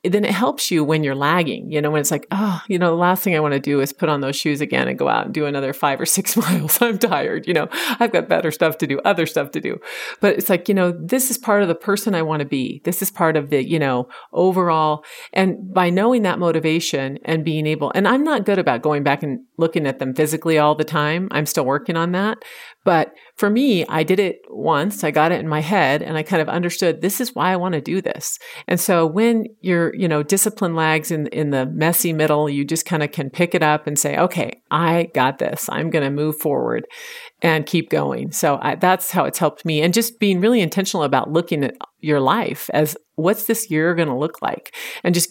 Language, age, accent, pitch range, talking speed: English, 40-59, American, 150-195 Hz, 255 wpm